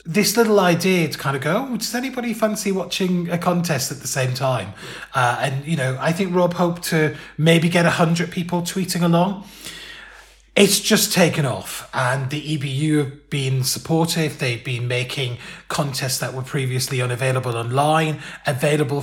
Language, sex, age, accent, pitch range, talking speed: English, male, 30-49, British, 130-175 Hz, 165 wpm